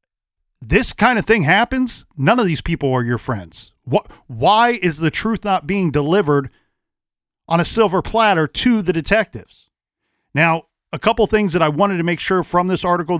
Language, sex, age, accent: English, male, 40-59, American